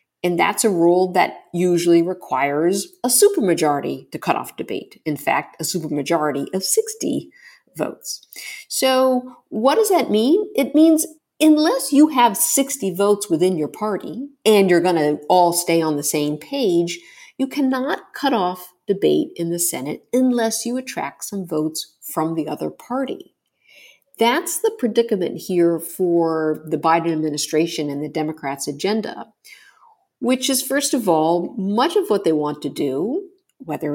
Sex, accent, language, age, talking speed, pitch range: female, American, English, 50-69, 155 wpm, 150-250 Hz